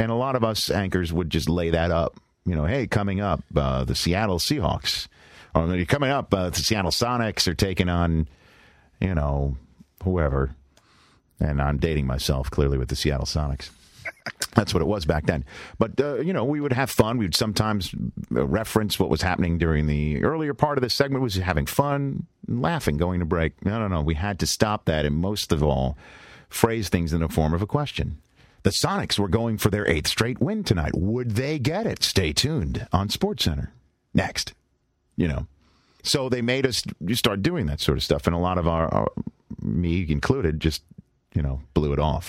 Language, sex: English, male